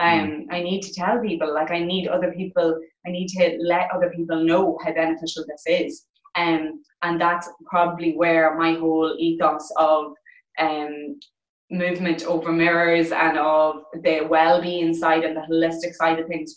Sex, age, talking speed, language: female, 20-39, 165 wpm, English